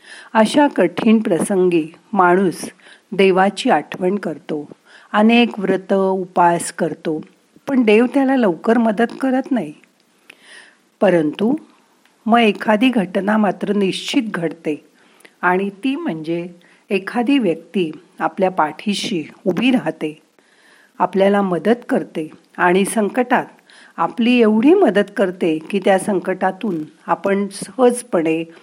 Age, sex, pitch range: 50-69, female, 180-230 Hz